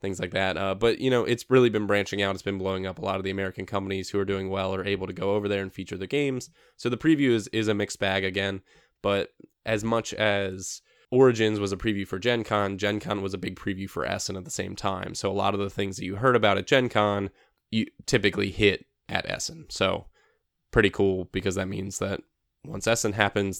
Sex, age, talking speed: male, 10-29, 245 wpm